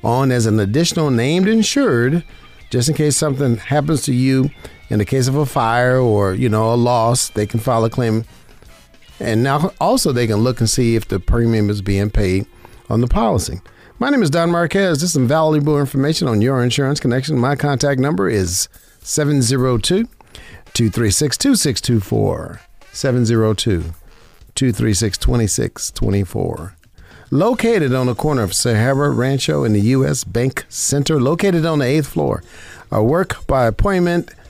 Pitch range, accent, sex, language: 105-150 Hz, American, male, English